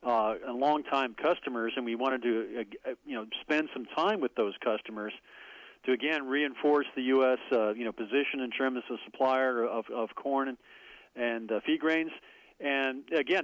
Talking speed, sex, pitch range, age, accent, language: 185 wpm, male, 120-140 Hz, 40-59, American, English